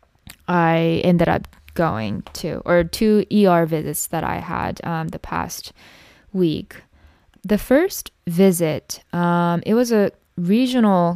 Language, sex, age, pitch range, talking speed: English, female, 10-29, 170-195 Hz, 130 wpm